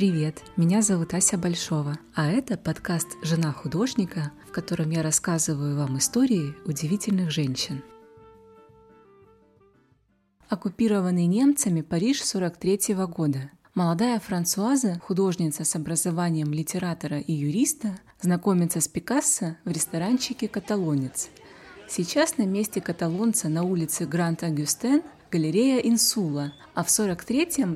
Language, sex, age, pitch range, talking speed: Russian, female, 20-39, 160-205 Hz, 110 wpm